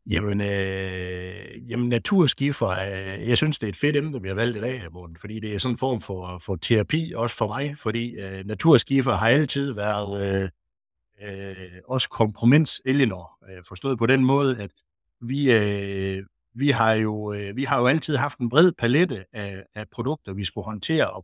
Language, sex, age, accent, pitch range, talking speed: Danish, male, 60-79, native, 100-135 Hz, 195 wpm